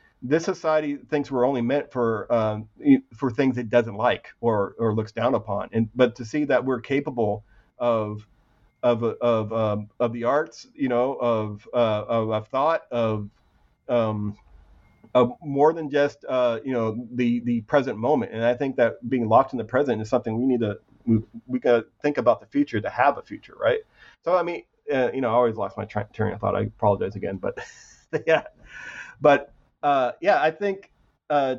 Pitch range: 115-145 Hz